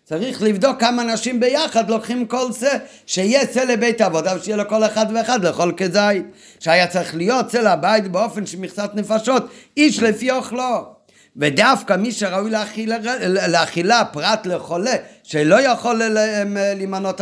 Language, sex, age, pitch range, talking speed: Hebrew, male, 50-69, 155-220 Hz, 135 wpm